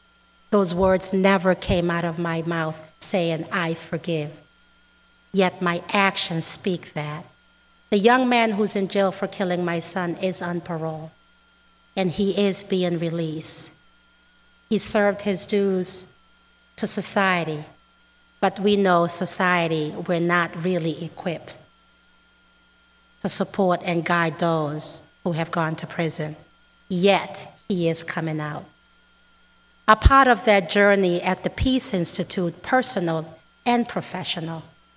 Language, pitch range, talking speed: English, 170-200 Hz, 130 wpm